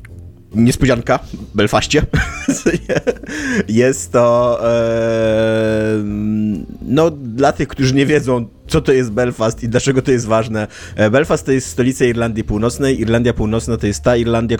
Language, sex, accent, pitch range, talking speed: Polish, male, native, 105-125 Hz, 130 wpm